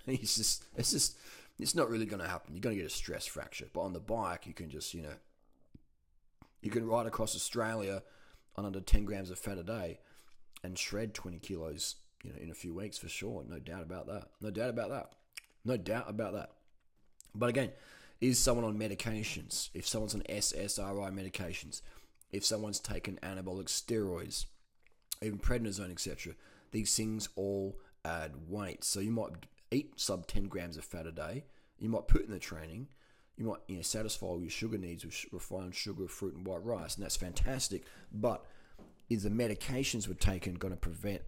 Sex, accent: male, Australian